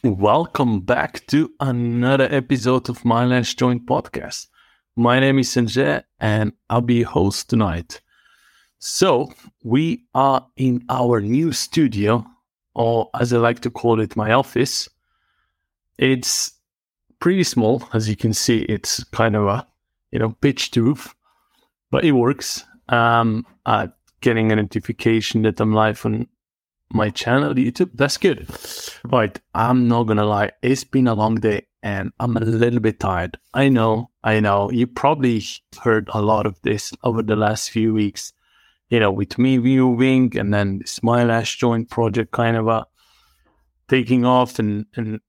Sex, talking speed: male, 160 wpm